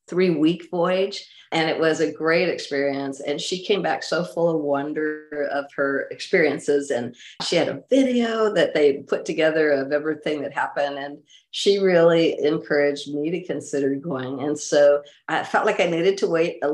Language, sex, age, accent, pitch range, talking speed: English, female, 50-69, American, 145-170 Hz, 185 wpm